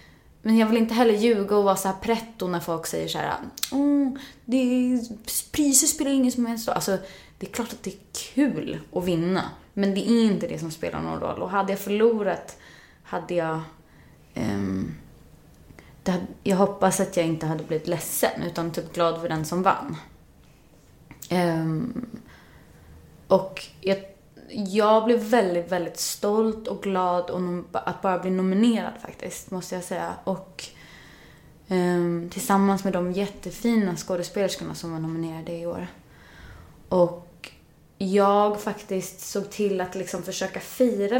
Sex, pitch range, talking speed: female, 175-220 Hz, 155 wpm